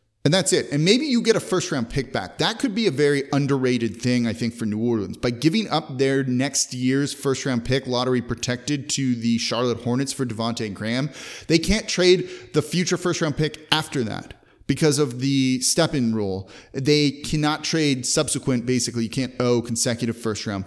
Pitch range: 115-145 Hz